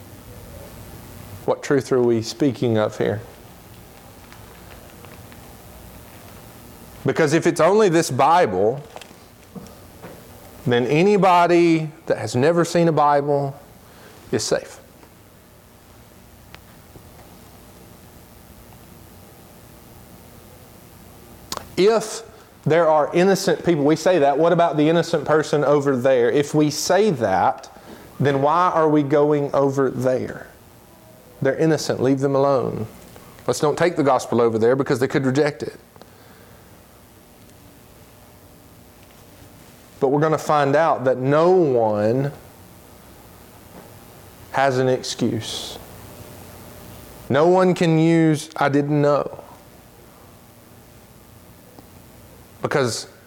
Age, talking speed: 40-59, 95 wpm